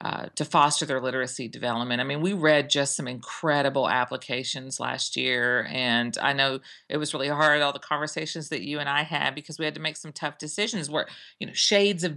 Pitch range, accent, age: 145-180 Hz, American, 40-59